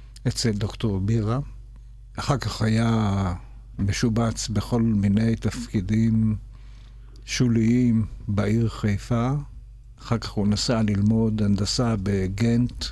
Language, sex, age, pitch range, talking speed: Hebrew, male, 60-79, 105-120 Hz, 95 wpm